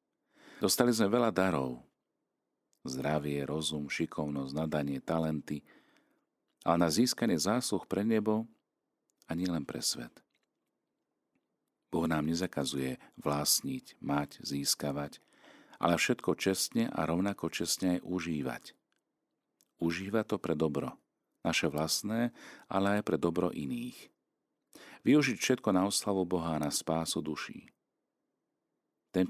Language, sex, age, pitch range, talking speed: Slovak, male, 50-69, 75-95 Hz, 110 wpm